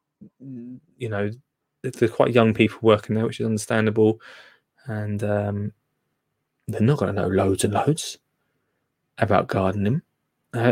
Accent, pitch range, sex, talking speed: British, 110-145 Hz, male, 135 wpm